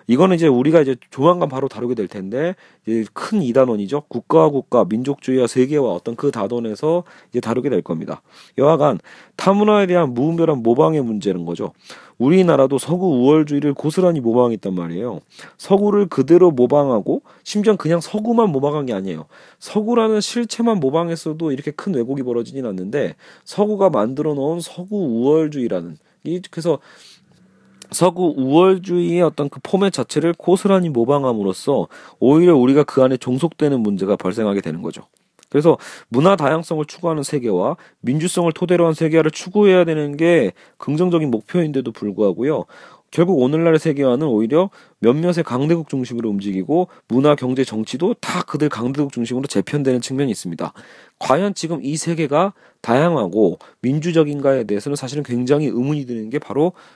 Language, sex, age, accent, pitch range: Korean, male, 40-59, native, 125-175 Hz